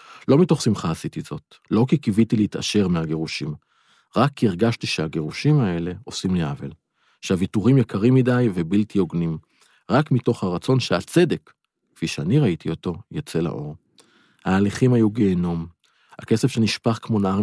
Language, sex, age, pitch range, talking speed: Hebrew, male, 50-69, 95-120 Hz, 140 wpm